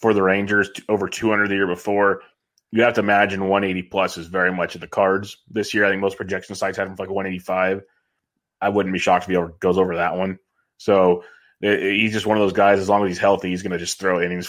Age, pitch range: 20-39, 95-105 Hz